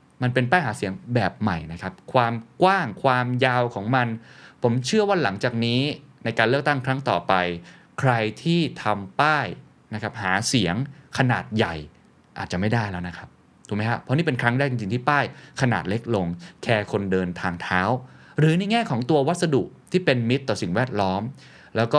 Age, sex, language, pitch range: 20-39, male, Thai, 105-140 Hz